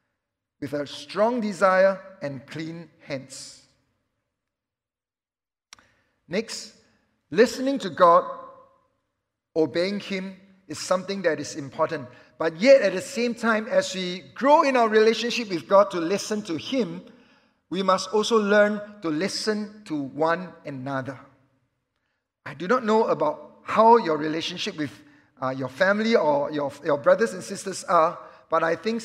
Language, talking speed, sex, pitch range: English, 140 wpm, male, 150-210 Hz